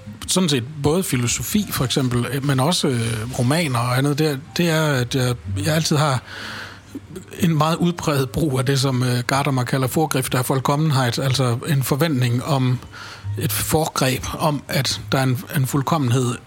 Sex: male